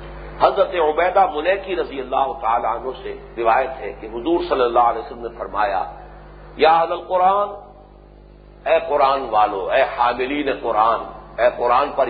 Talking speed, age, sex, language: 150 wpm, 50-69, male, English